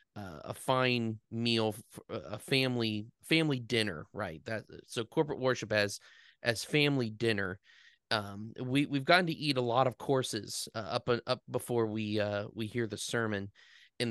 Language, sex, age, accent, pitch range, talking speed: English, male, 30-49, American, 110-130 Hz, 165 wpm